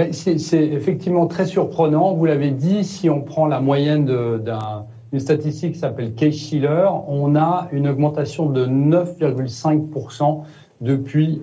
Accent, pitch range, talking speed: French, 130-175 Hz, 135 wpm